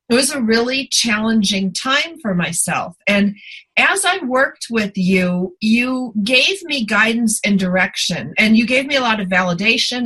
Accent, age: American, 40-59